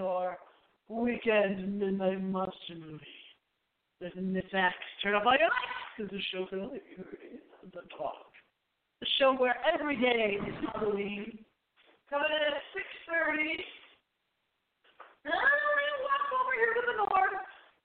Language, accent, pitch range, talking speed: English, American, 200-285 Hz, 140 wpm